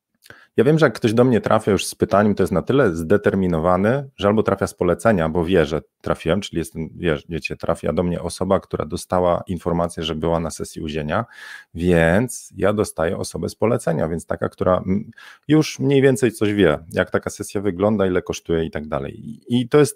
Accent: native